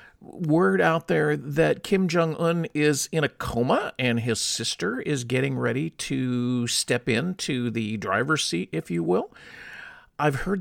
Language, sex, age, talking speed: English, male, 50-69, 155 wpm